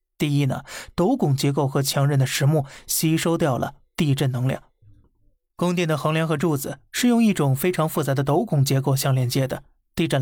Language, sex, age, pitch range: Chinese, male, 20-39, 140-170 Hz